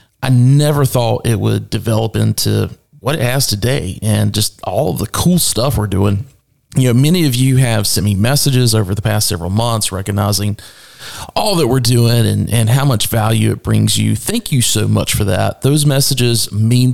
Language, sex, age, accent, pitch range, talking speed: English, male, 30-49, American, 105-125 Hz, 195 wpm